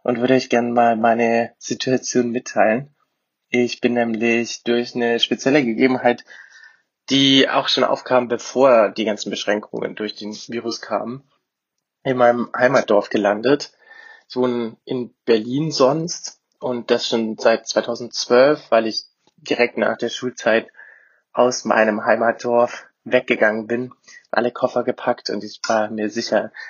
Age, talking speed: 20-39, 135 wpm